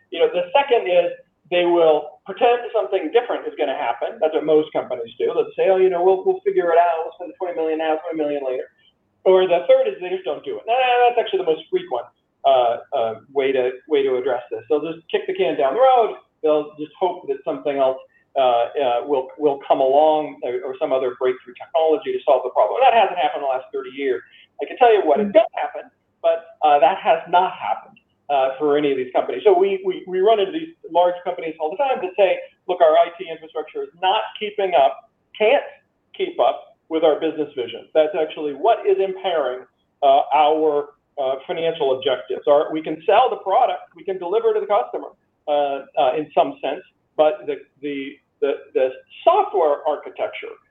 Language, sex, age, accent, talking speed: English, male, 40-59, American, 215 wpm